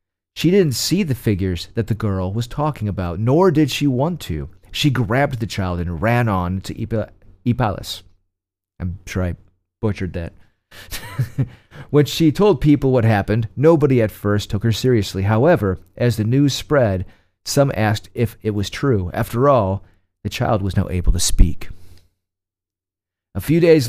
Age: 40-59